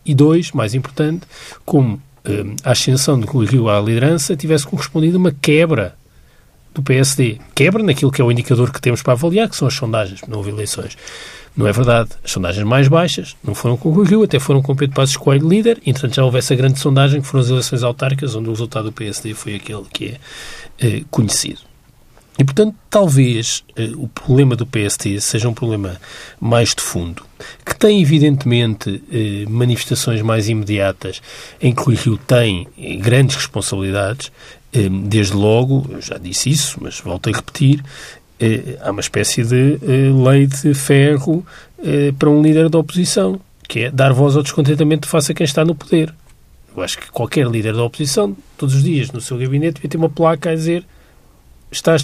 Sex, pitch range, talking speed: male, 115-150 Hz, 185 wpm